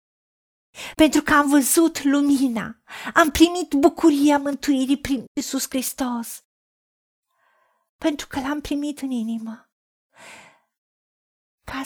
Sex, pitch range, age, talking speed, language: female, 255-305 Hz, 40-59, 95 wpm, Romanian